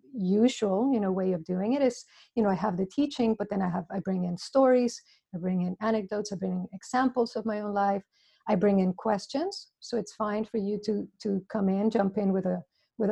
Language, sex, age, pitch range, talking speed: English, female, 50-69, 200-240 Hz, 240 wpm